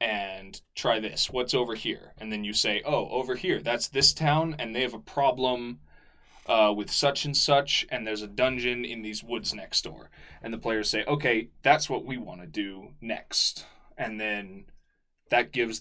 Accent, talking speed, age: American, 190 wpm, 20-39